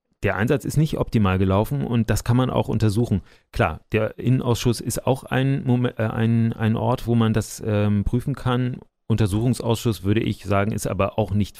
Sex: male